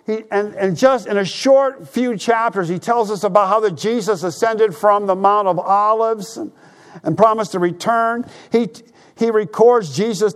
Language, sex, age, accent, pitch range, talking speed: English, male, 50-69, American, 195-230 Hz, 180 wpm